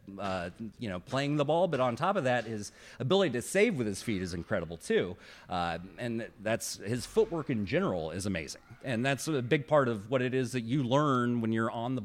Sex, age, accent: male, 30-49, American